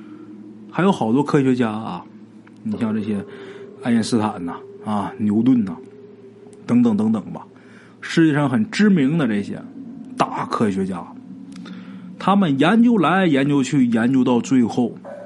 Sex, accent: male, native